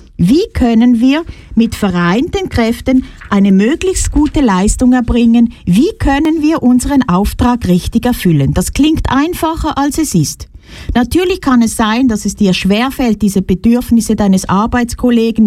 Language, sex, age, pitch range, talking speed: German, female, 50-69, 200-280 Hz, 140 wpm